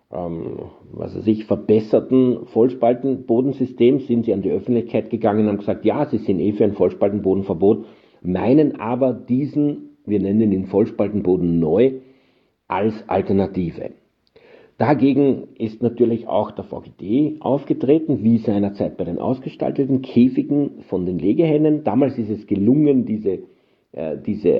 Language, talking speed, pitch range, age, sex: German, 130 wpm, 95-125 Hz, 50-69, male